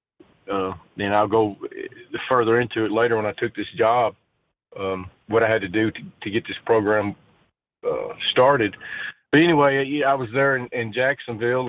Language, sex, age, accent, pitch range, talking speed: English, male, 40-59, American, 115-140 Hz, 175 wpm